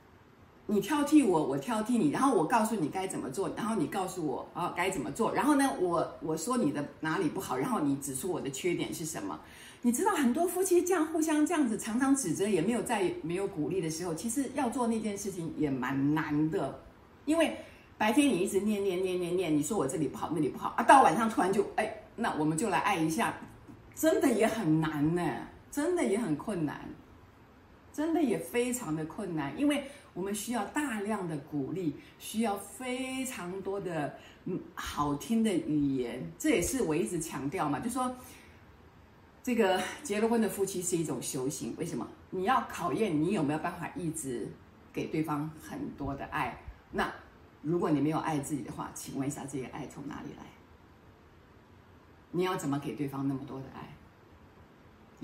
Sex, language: female, Chinese